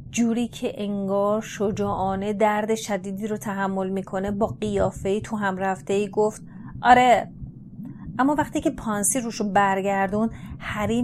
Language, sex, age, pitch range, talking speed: Persian, female, 30-49, 200-245 Hz, 130 wpm